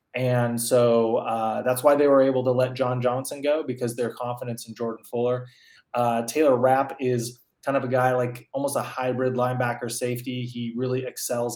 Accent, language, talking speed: American, English, 185 wpm